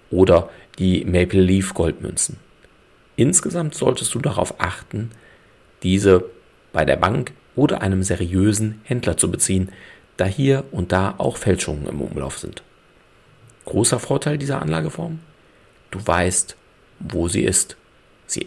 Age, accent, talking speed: 40-59, German, 125 wpm